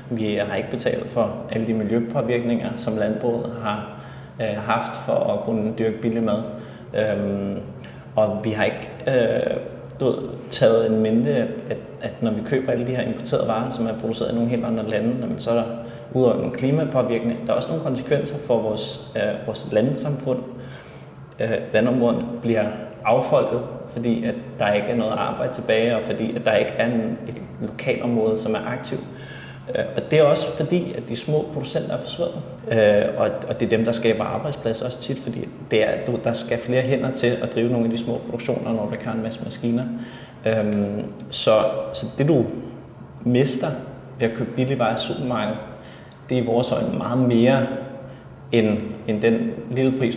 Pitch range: 110-125 Hz